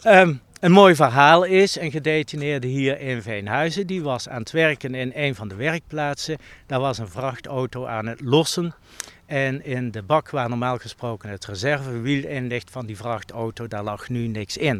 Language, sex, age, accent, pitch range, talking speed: Dutch, male, 60-79, Dutch, 115-145 Hz, 185 wpm